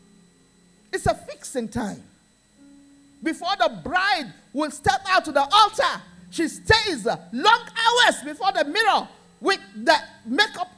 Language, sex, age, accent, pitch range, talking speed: English, male, 50-69, Nigerian, 205-340 Hz, 130 wpm